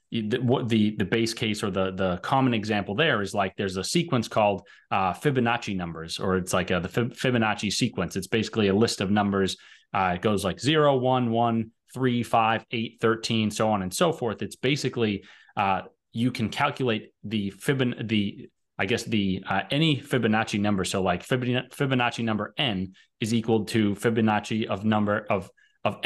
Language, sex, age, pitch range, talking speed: English, male, 30-49, 100-125 Hz, 185 wpm